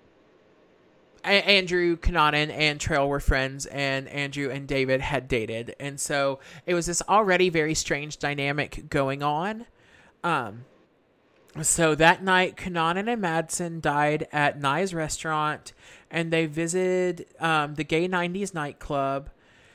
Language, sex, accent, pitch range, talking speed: English, male, American, 145-180 Hz, 130 wpm